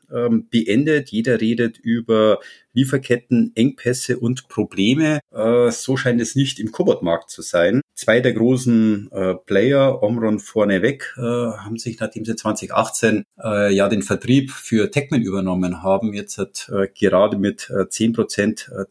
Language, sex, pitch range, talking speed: German, male, 105-120 Hz, 125 wpm